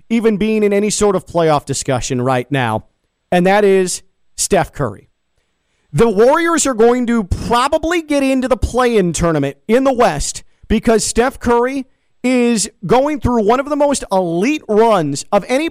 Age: 40-59